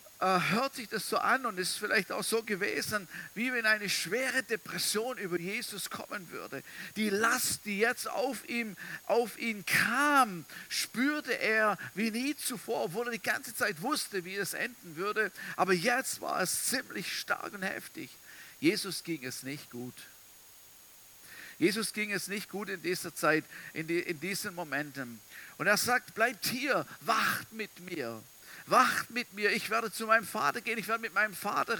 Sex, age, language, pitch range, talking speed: male, 50-69, German, 155-220 Hz, 175 wpm